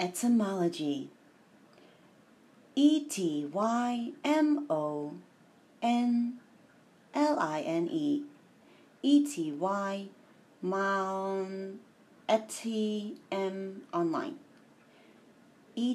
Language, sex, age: English, female, 30-49